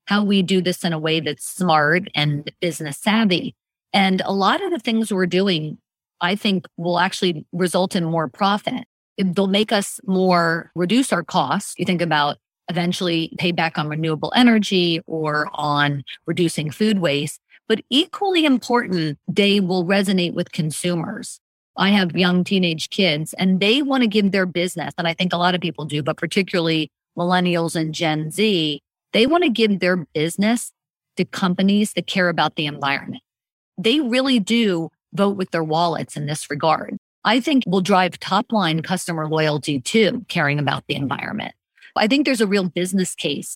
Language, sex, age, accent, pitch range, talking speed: English, female, 40-59, American, 160-200 Hz, 170 wpm